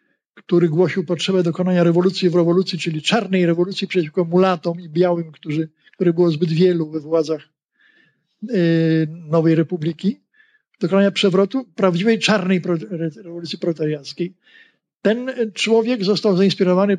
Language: Polish